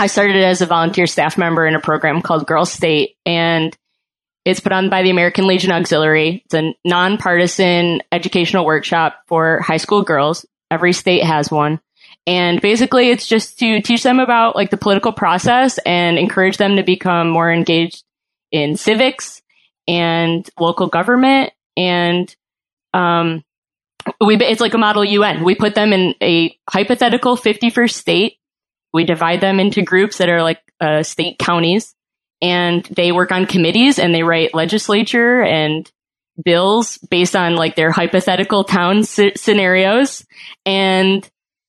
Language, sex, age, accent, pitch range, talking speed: English, female, 20-39, American, 170-205 Hz, 155 wpm